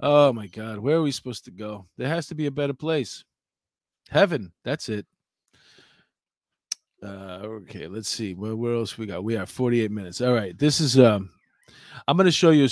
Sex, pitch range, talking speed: male, 105-145 Hz, 205 wpm